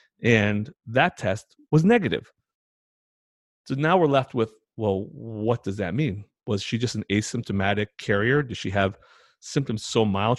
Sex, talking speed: male, 155 wpm